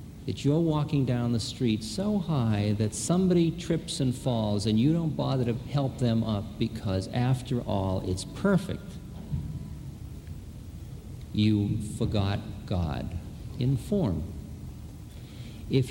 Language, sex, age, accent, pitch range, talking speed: English, male, 60-79, American, 110-155 Hz, 120 wpm